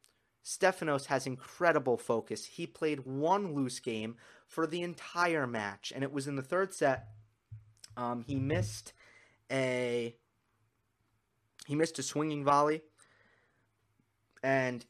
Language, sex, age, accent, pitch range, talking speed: English, male, 30-49, American, 115-145 Hz, 120 wpm